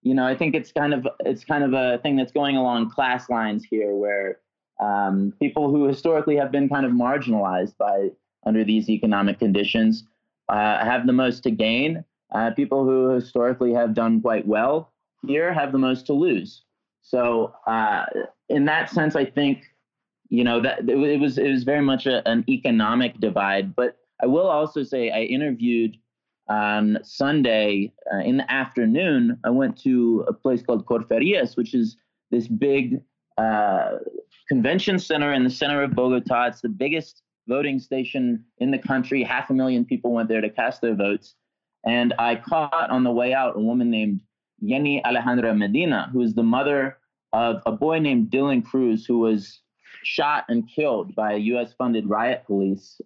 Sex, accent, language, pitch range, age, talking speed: male, American, English, 110-140 Hz, 30-49, 180 wpm